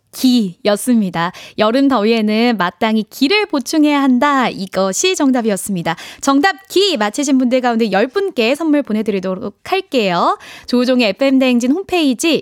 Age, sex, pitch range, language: 20-39, female, 215-310 Hz, Korean